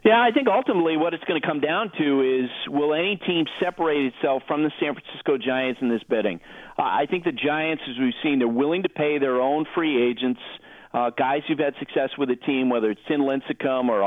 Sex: male